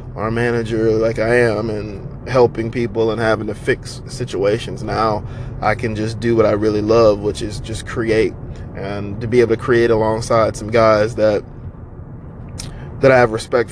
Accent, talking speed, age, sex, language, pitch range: American, 175 wpm, 20-39, male, English, 110-125 Hz